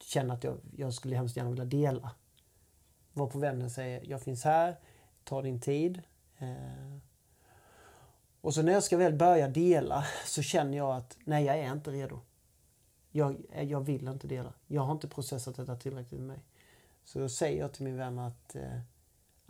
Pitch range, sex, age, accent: 125-160 Hz, male, 30-49, native